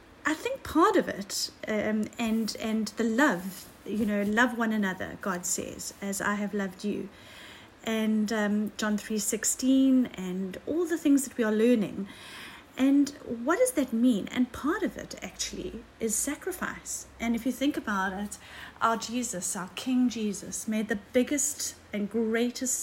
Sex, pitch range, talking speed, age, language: female, 210-270 Hz, 165 wpm, 40-59, English